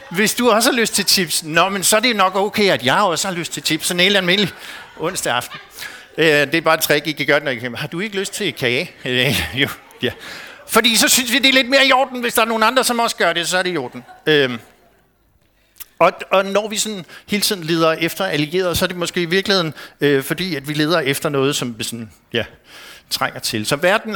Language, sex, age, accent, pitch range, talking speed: Danish, male, 60-79, native, 140-195 Hz, 265 wpm